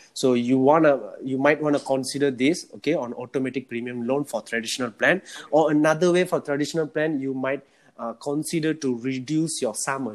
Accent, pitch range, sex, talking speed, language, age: Indian, 125-155 Hz, male, 190 wpm, English, 30-49